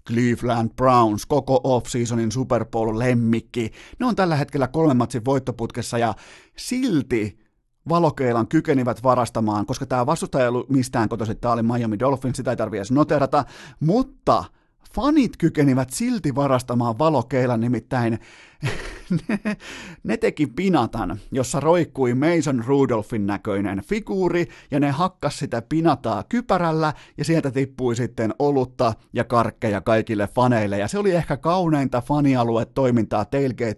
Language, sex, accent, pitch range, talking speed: Finnish, male, native, 115-145 Hz, 130 wpm